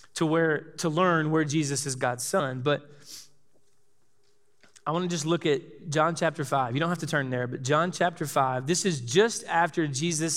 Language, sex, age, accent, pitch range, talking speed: English, male, 20-39, American, 135-160 Hz, 185 wpm